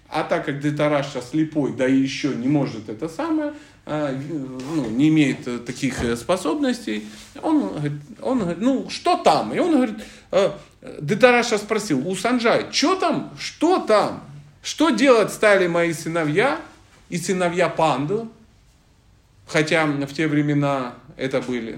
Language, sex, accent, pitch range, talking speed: Russian, male, native, 130-200 Hz, 135 wpm